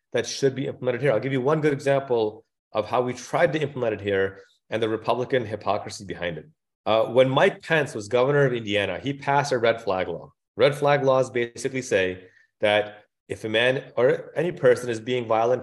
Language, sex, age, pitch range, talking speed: English, male, 30-49, 110-140 Hz, 205 wpm